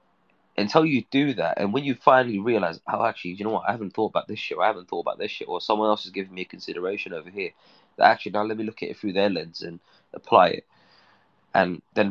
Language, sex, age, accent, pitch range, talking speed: English, male, 20-39, British, 100-115 Hz, 265 wpm